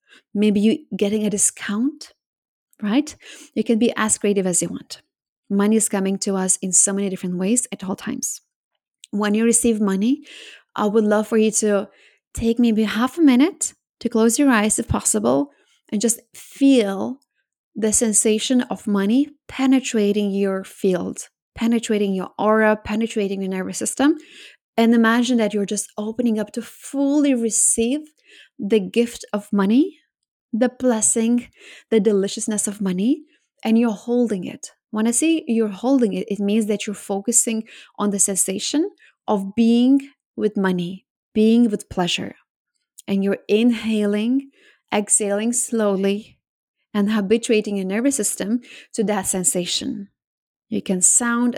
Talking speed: 145 wpm